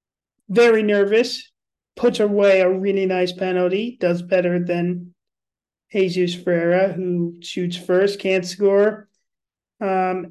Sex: male